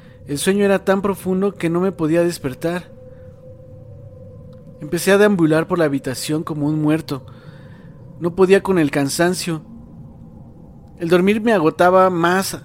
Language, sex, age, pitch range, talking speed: Spanish, male, 40-59, 135-175 Hz, 140 wpm